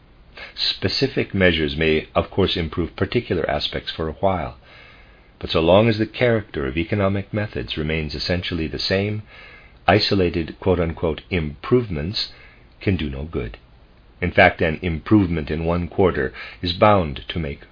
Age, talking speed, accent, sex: 50-69, 140 wpm, American, male